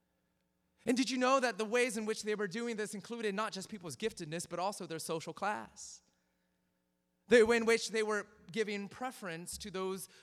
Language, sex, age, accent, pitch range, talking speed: English, male, 30-49, American, 145-215 Hz, 195 wpm